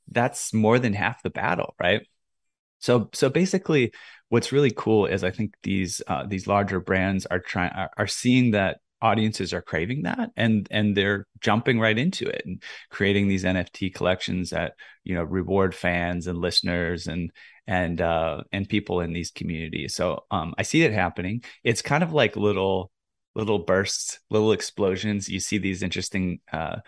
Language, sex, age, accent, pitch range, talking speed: English, male, 20-39, American, 90-115 Hz, 170 wpm